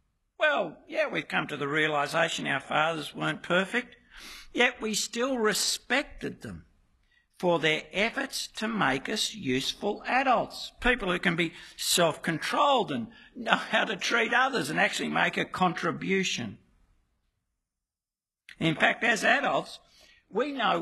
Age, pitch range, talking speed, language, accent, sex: 60-79, 150-235 Hz, 135 wpm, English, Australian, male